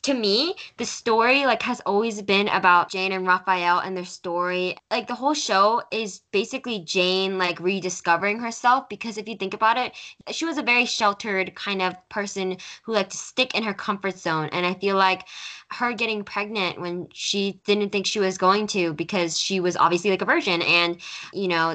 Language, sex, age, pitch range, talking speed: English, female, 10-29, 175-210 Hz, 200 wpm